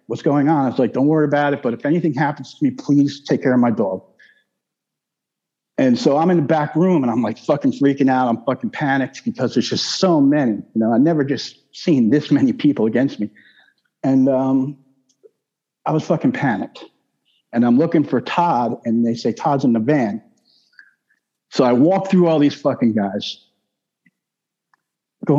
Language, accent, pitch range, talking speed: English, American, 125-150 Hz, 190 wpm